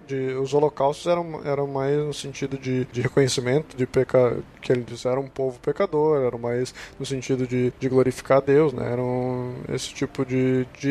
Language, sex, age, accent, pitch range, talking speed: Portuguese, male, 20-39, Brazilian, 130-150 Hz, 185 wpm